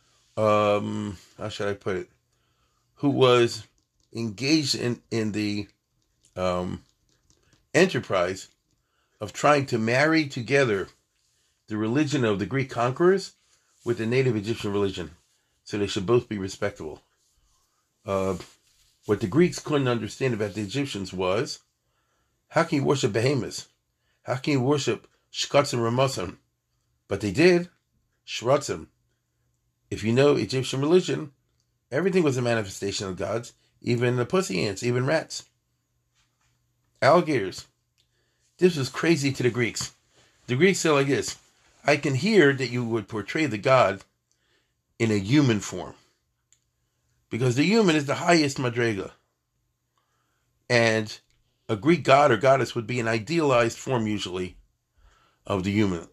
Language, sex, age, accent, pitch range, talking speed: English, male, 50-69, American, 105-135 Hz, 135 wpm